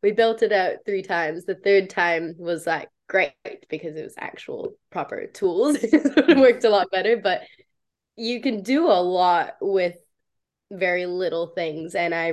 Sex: female